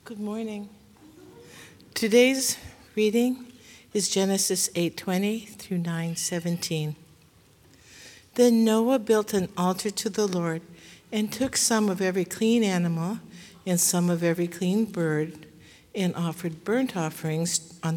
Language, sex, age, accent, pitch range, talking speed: English, female, 60-79, American, 170-210 Hz, 115 wpm